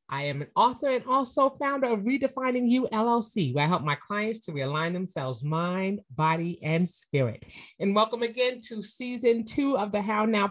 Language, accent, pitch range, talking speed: English, American, 175-250 Hz, 190 wpm